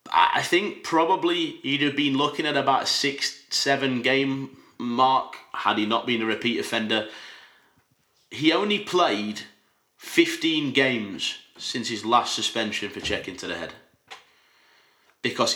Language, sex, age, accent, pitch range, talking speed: English, male, 30-49, British, 105-130 Hz, 140 wpm